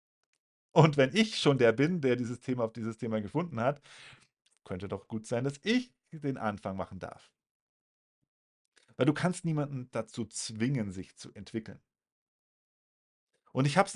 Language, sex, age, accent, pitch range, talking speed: German, male, 40-59, German, 110-165 Hz, 155 wpm